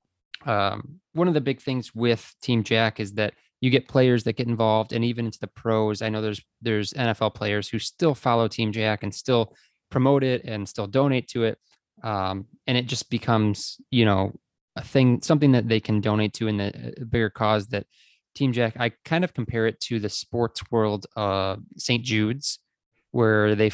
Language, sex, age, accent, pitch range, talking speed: English, male, 20-39, American, 105-125 Hz, 195 wpm